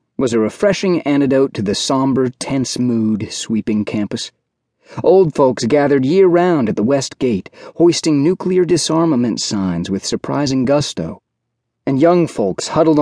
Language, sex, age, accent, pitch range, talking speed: English, male, 30-49, American, 115-155 Hz, 140 wpm